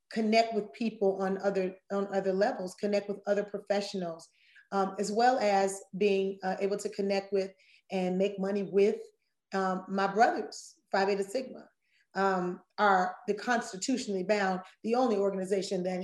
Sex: female